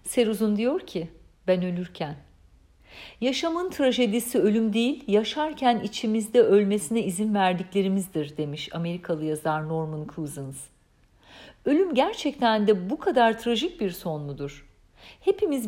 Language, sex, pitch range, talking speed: Turkish, female, 170-250 Hz, 110 wpm